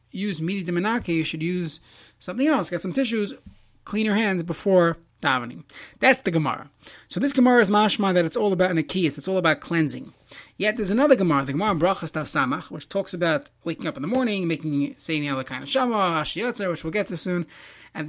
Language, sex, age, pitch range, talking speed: English, male, 30-49, 160-210 Hz, 215 wpm